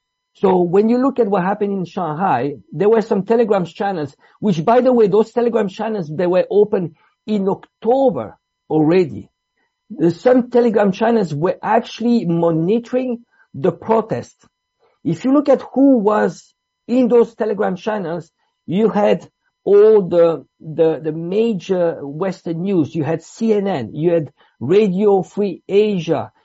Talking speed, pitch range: 140 wpm, 175-235 Hz